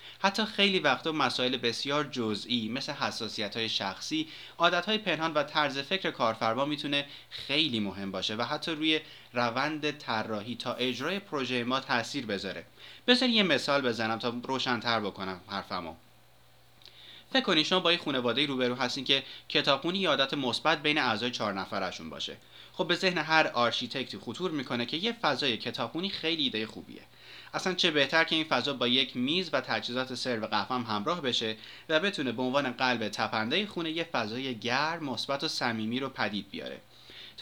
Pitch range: 115-155 Hz